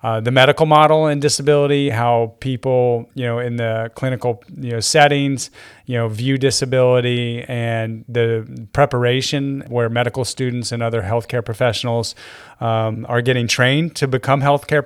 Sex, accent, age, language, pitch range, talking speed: male, American, 30-49, English, 115-135 Hz, 150 wpm